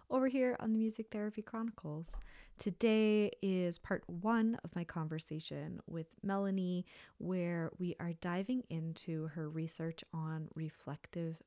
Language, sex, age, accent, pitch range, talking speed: English, female, 20-39, American, 160-200 Hz, 130 wpm